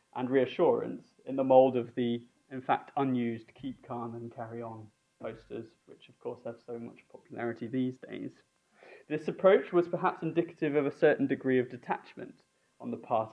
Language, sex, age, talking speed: English, male, 20-39, 175 wpm